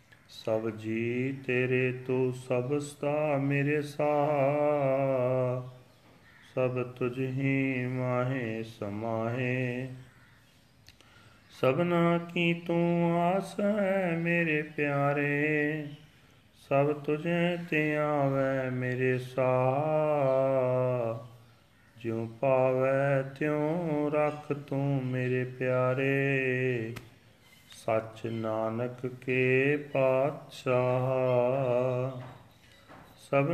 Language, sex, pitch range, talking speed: Punjabi, male, 125-150 Hz, 65 wpm